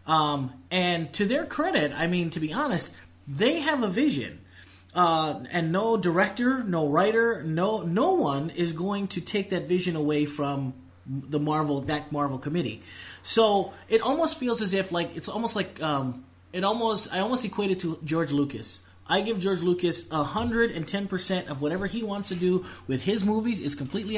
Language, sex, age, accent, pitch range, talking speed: English, male, 30-49, American, 140-195 Hz, 190 wpm